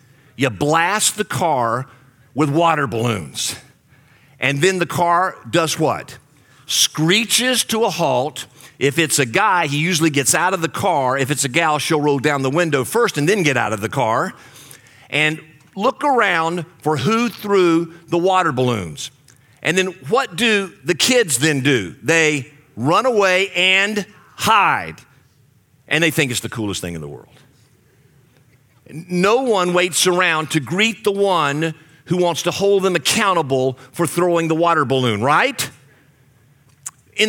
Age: 50-69